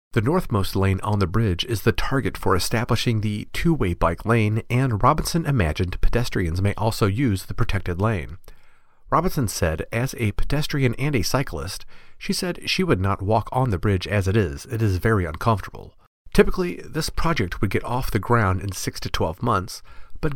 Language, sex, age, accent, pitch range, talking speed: English, male, 40-59, American, 90-130 Hz, 185 wpm